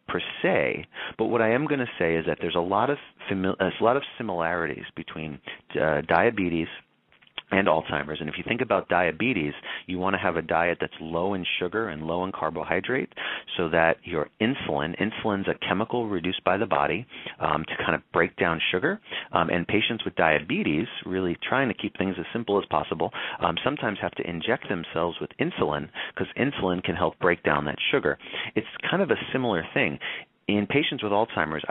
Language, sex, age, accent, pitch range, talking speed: English, male, 40-59, American, 85-105 Hz, 195 wpm